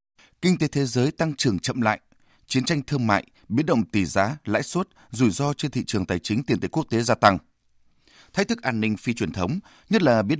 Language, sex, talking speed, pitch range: Vietnamese, male, 235 wpm, 100-145 Hz